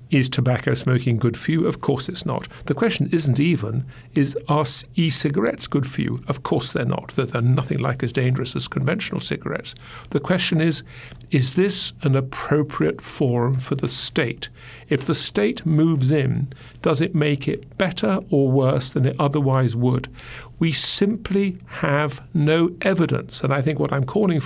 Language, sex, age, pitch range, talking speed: English, male, 50-69, 130-160 Hz, 175 wpm